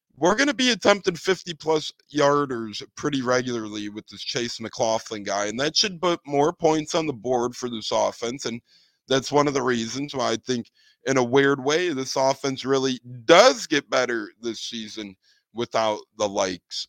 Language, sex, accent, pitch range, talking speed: English, male, American, 105-145 Hz, 180 wpm